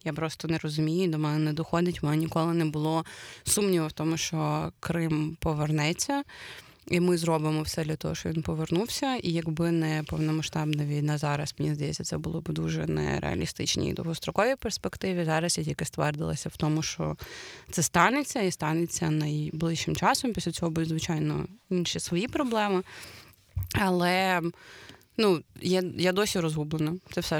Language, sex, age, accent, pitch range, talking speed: Ukrainian, female, 20-39, native, 150-170 Hz, 160 wpm